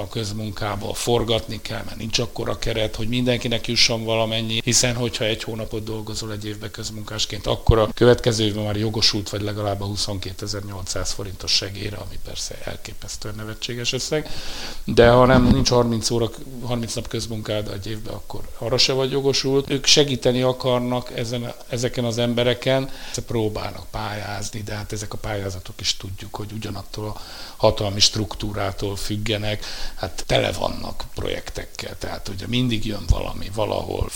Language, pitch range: Hungarian, 105-130 Hz